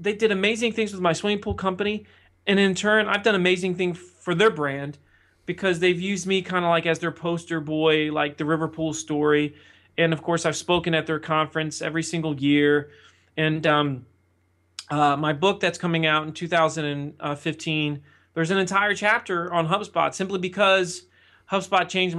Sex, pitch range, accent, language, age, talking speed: male, 160-200 Hz, American, English, 30-49, 180 wpm